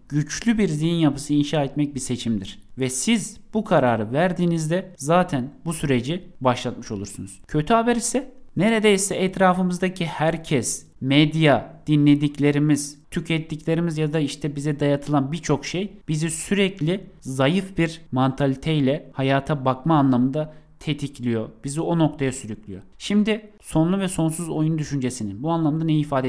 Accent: native